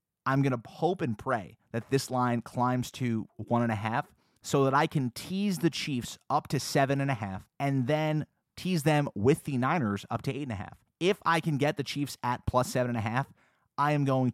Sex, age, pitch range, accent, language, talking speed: male, 30-49, 120-155 Hz, American, English, 235 wpm